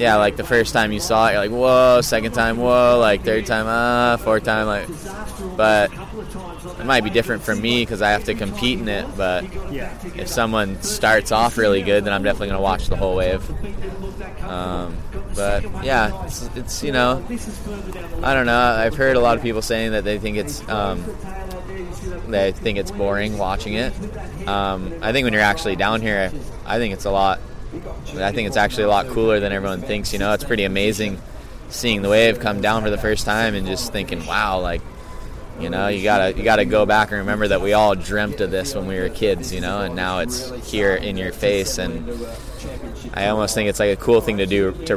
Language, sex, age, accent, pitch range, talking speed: English, male, 20-39, American, 100-115 Hz, 220 wpm